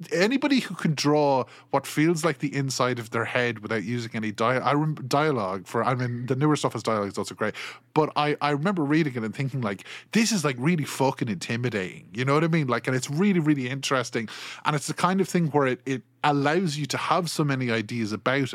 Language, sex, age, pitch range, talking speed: English, male, 20-39, 115-155 Hz, 235 wpm